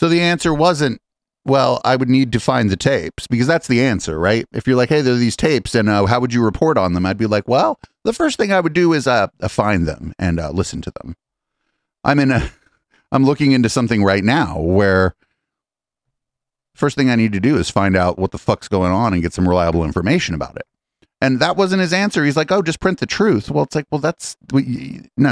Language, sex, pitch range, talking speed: English, male, 95-140 Hz, 240 wpm